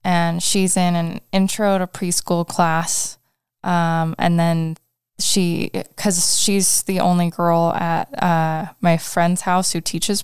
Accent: American